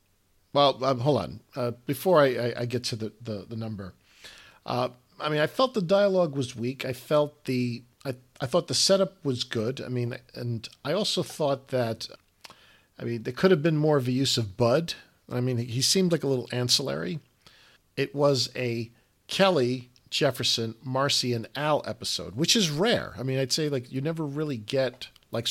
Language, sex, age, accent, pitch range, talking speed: English, male, 50-69, American, 120-145 Hz, 195 wpm